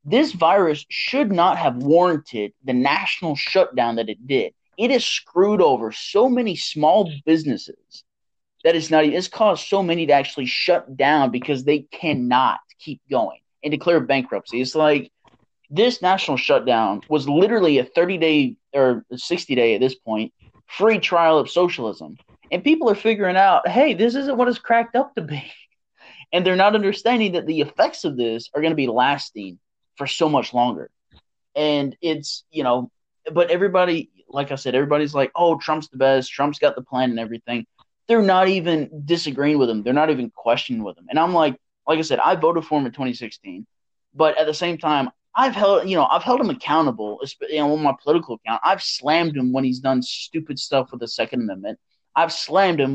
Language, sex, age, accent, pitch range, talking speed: English, male, 20-39, American, 130-180 Hz, 190 wpm